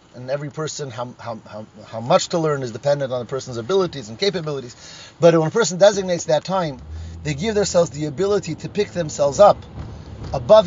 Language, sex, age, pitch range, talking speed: English, male, 30-49, 130-175 Hz, 190 wpm